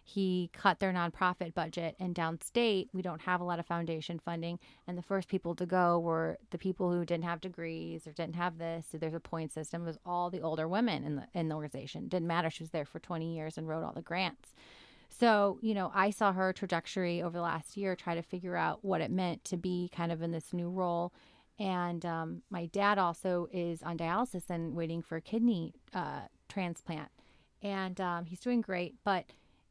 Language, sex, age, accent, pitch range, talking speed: English, female, 30-49, American, 170-195 Hz, 220 wpm